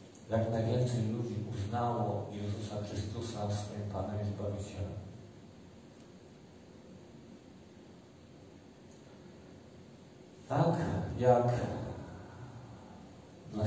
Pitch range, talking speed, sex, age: 100-120 Hz, 55 wpm, male, 40-59